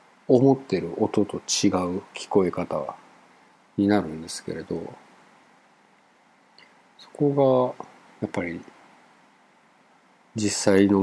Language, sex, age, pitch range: Japanese, male, 50-69, 95-140 Hz